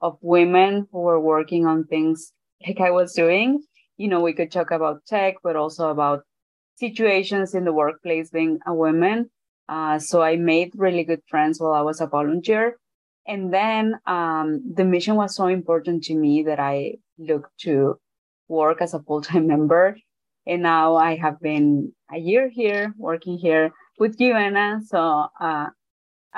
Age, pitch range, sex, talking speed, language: 20-39, 155-185 Hz, female, 170 wpm, English